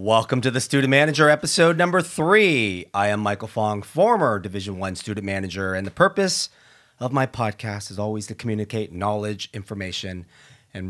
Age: 30-49